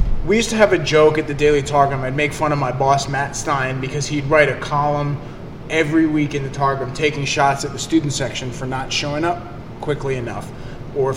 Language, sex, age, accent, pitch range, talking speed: English, male, 20-39, American, 135-155 Hz, 220 wpm